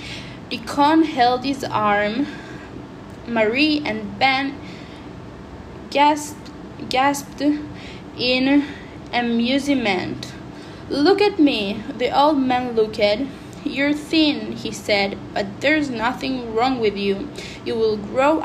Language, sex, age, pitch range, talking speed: English, female, 10-29, 225-280 Hz, 100 wpm